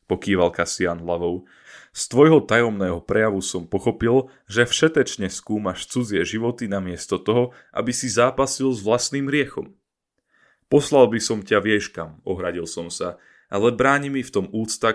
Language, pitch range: Slovak, 95-120 Hz